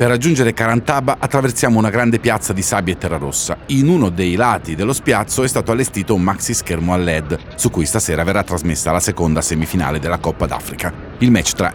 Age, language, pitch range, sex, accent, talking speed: 40-59, Italian, 80-115 Hz, male, native, 205 wpm